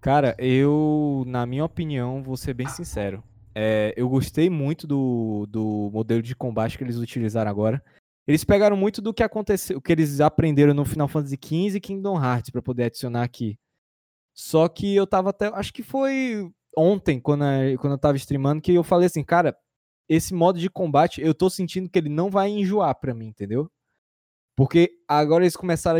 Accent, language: Brazilian, Portuguese